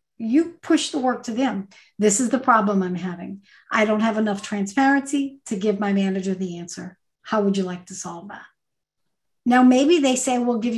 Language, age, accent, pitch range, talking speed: English, 50-69, American, 195-250 Hz, 200 wpm